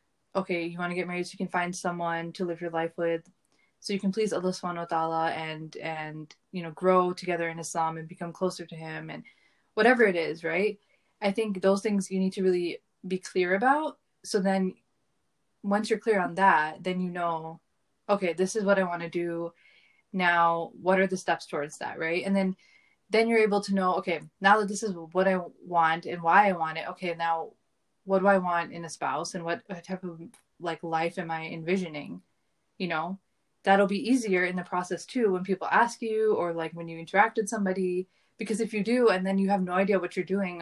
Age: 20-39